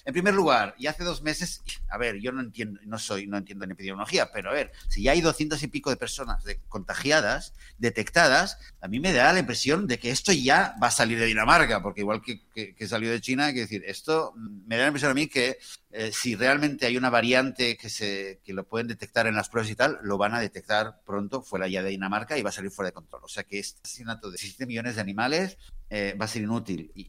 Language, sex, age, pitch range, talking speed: Spanish, male, 50-69, 100-135 Hz, 255 wpm